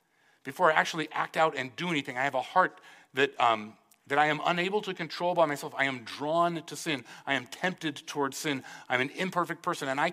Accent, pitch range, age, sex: American, 140-185 Hz, 40-59, male